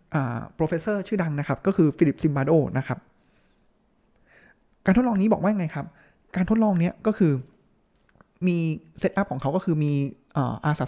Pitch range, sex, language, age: 145-195 Hz, male, Thai, 20-39